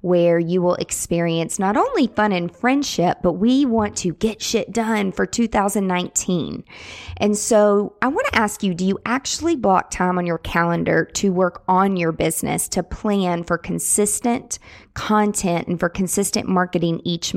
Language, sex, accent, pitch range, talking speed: English, female, American, 175-220 Hz, 165 wpm